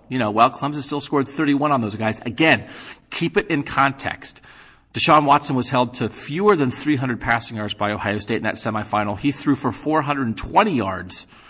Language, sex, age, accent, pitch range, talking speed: English, male, 40-59, American, 110-130 Hz, 190 wpm